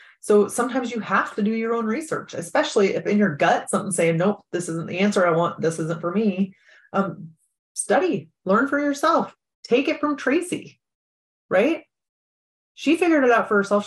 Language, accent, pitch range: English, American, 190-235 Hz